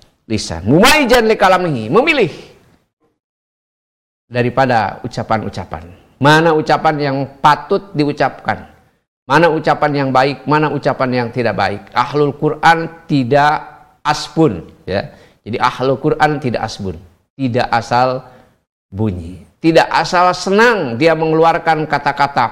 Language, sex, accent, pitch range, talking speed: Indonesian, male, native, 120-170 Hz, 100 wpm